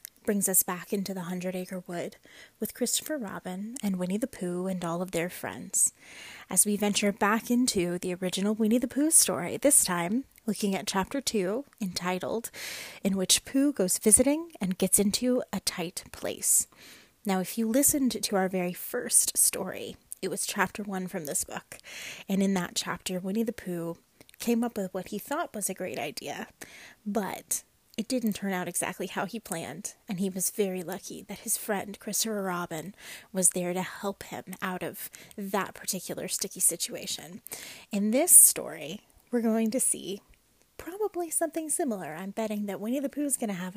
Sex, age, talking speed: female, 20-39, 180 wpm